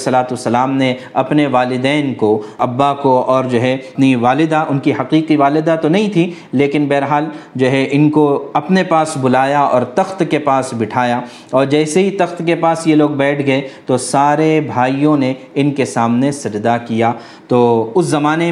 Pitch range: 130-155 Hz